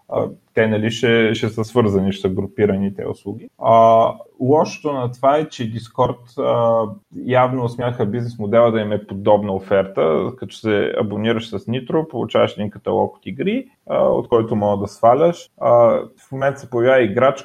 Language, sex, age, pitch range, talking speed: Bulgarian, male, 30-49, 105-120 Hz, 160 wpm